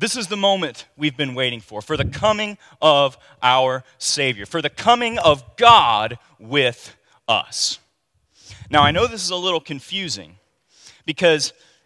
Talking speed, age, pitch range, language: 150 wpm, 30-49, 135-180 Hz, English